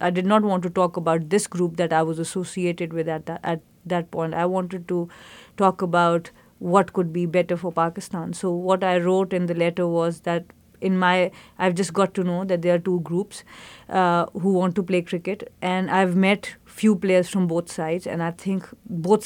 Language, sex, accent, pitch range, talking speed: English, female, Indian, 175-190 Hz, 215 wpm